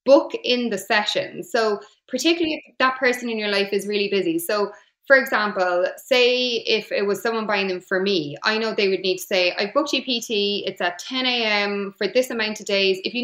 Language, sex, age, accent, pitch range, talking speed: English, female, 20-39, Irish, 185-230 Hz, 225 wpm